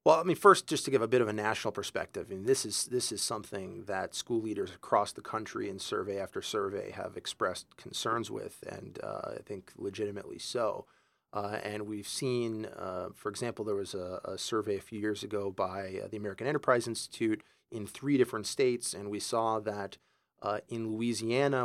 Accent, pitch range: American, 105-135 Hz